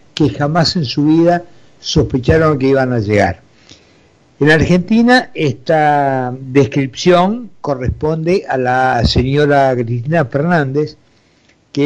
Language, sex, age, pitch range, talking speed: Spanish, male, 60-79, 120-150 Hz, 105 wpm